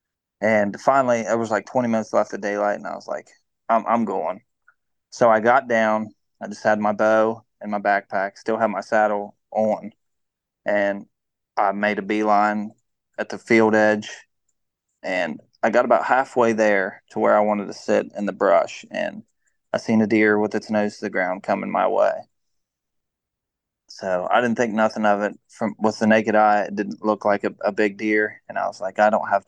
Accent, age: American, 20-39